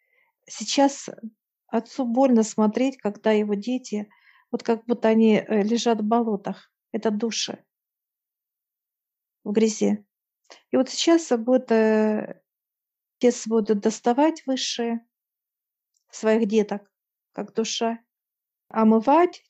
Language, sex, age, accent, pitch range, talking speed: Russian, female, 50-69, native, 215-250 Hz, 95 wpm